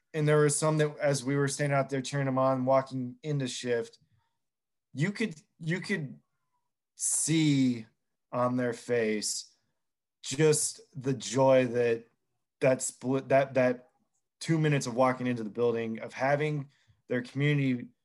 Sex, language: male, English